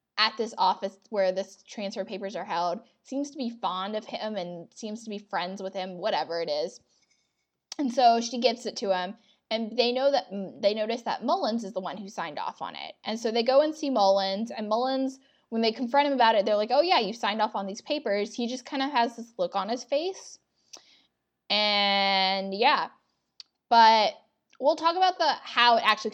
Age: 10-29